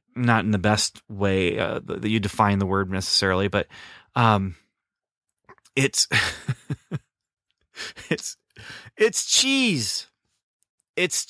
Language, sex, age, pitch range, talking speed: English, male, 30-49, 105-135 Hz, 100 wpm